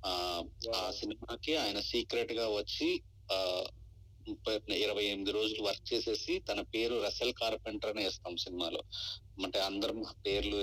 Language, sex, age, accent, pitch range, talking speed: Telugu, male, 30-49, native, 100-120 Hz, 130 wpm